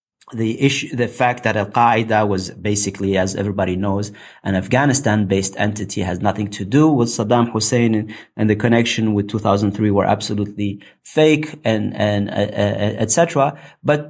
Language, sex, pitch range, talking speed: English, male, 105-130 Hz, 180 wpm